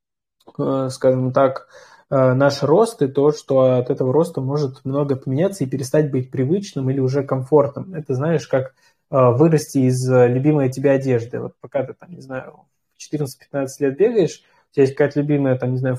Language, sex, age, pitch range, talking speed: Russian, male, 20-39, 130-155 Hz, 170 wpm